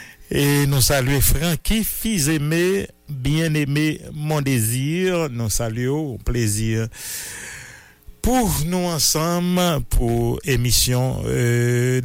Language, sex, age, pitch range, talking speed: English, male, 60-79, 110-145 Hz, 95 wpm